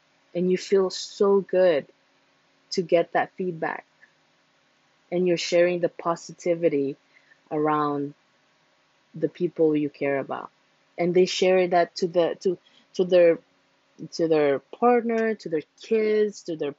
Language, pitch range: English, 145-175 Hz